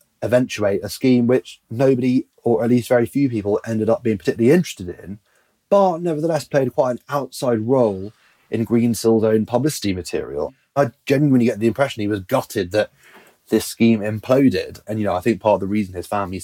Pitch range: 95-115 Hz